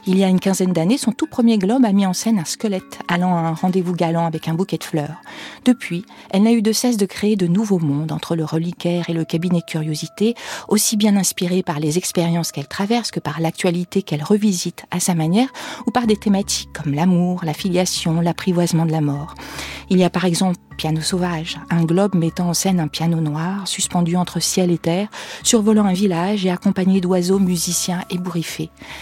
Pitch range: 170-210 Hz